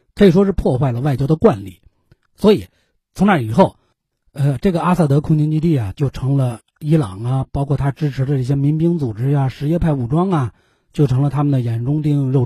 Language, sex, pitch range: Chinese, male, 125-170 Hz